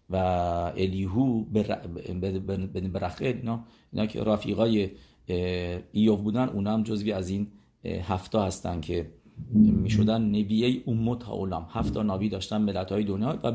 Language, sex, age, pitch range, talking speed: English, male, 50-69, 95-120 Hz, 120 wpm